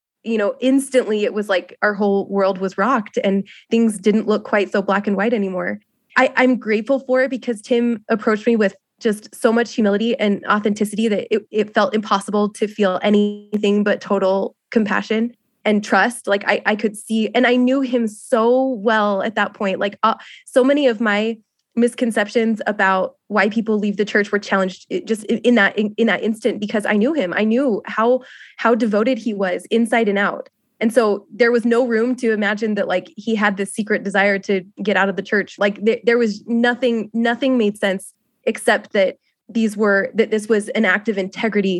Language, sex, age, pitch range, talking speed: English, female, 20-39, 205-235 Hz, 200 wpm